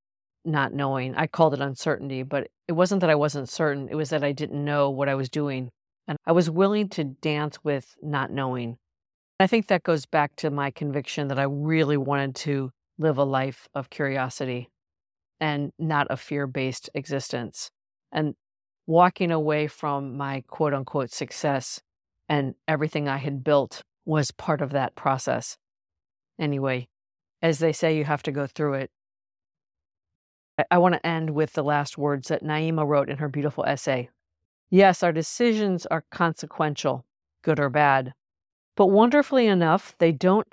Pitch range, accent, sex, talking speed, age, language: 135-160 Hz, American, female, 165 wpm, 50-69, English